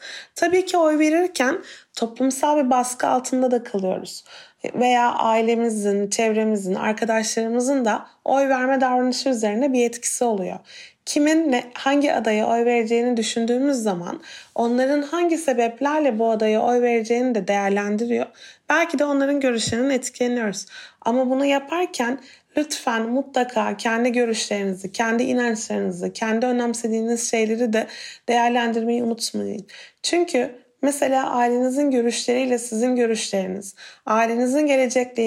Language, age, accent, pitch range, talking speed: Turkish, 30-49, native, 220-260 Hz, 115 wpm